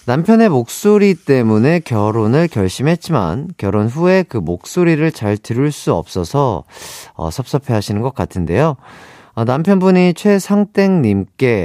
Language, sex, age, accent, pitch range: Korean, male, 40-59, native, 110-165 Hz